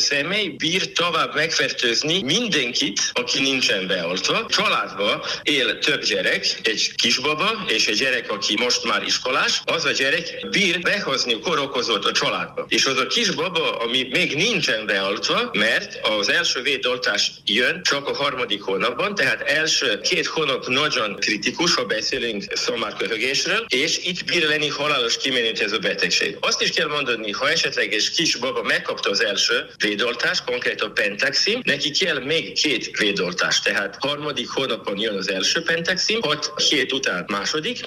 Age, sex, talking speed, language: 60-79, male, 150 wpm, Hungarian